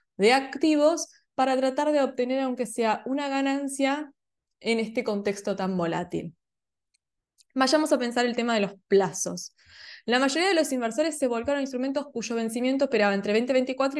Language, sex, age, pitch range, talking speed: Spanish, female, 20-39, 210-270 Hz, 160 wpm